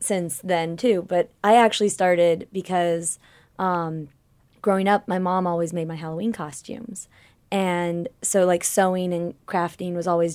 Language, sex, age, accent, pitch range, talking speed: English, female, 20-39, American, 170-200 Hz, 150 wpm